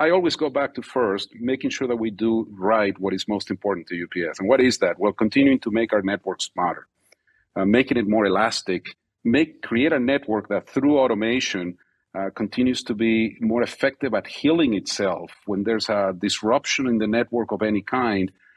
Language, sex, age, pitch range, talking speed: English, male, 40-59, 100-130 Hz, 195 wpm